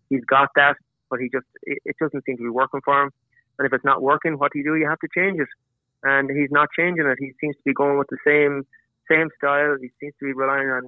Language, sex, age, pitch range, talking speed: English, male, 30-49, 130-140 Hz, 265 wpm